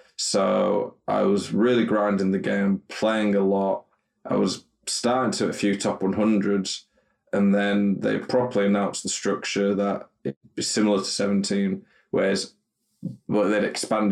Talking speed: 155 wpm